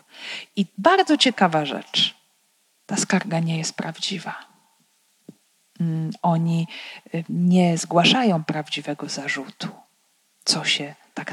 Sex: female